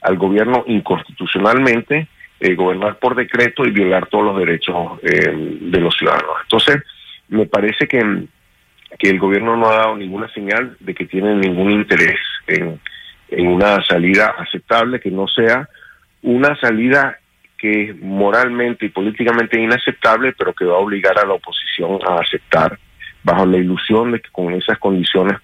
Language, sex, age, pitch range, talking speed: English, male, 50-69, 95-120 Hz, 160 wpm